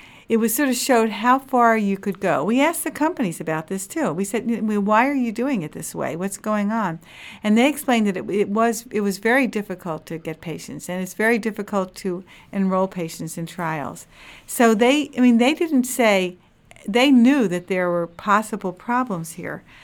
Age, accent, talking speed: 50-69, American, 205 wpm